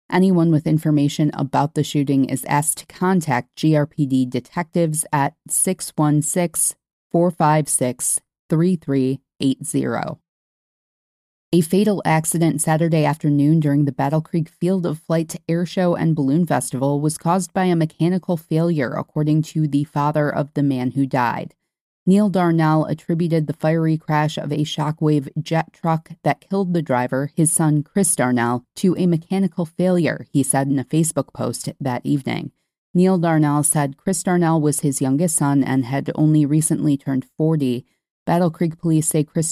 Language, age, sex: English, 30-49, female